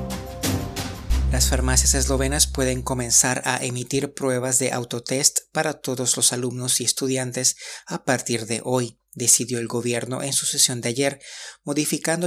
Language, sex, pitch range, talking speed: Spanish, male, 120-135 Hz, 140 wpm